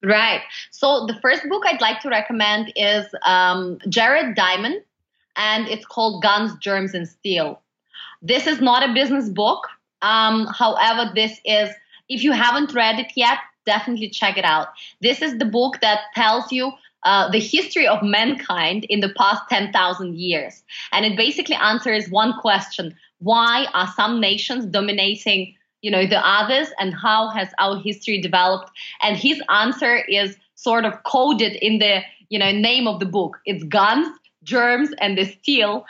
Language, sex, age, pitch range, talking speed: English, female, 20-39, 195-245 Hz, 165 wpm